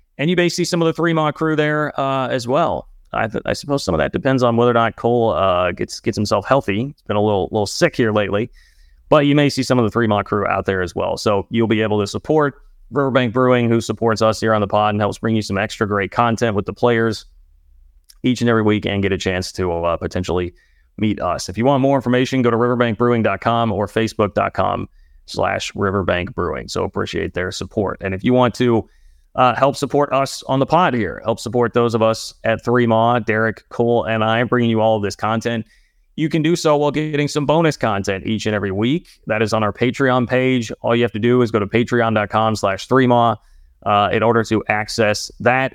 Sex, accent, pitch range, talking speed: male, American, 105-125 Hz, 230 wpm